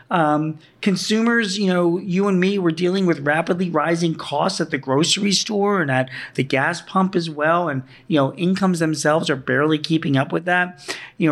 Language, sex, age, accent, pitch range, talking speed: English, male, 40-59, American, 140-180 Hz, 190 wpm